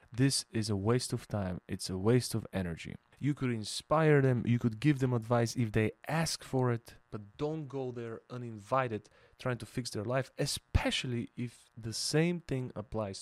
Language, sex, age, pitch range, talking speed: English, male, 30-49, 105-130 Hz, 185 wpm